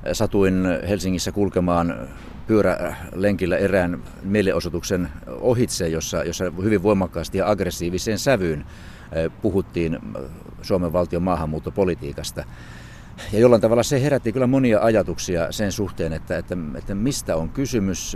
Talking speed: 110 wpm